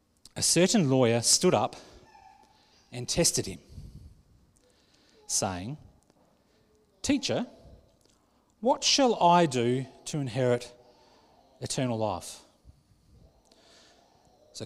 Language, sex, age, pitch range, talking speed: English, male, 30-49, 115-150 Hz, 80 wpm